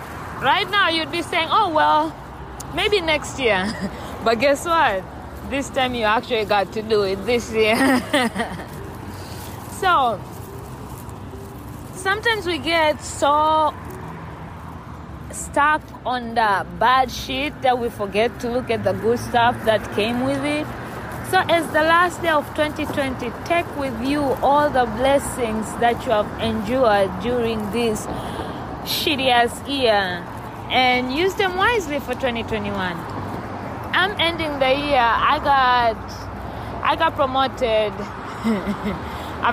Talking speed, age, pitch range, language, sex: 130 wpm, 20-39, 220-295 Hz, English, female